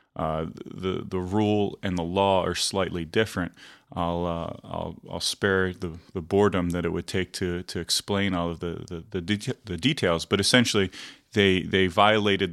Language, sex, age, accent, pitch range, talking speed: English, male, 30-49, American, 85-95 Hz, 180 wpm